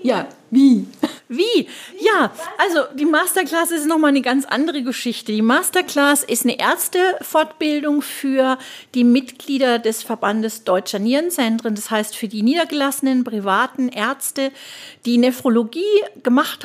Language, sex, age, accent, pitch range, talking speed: German, female, 40-59, German, 220-285 Hz, 125 wpm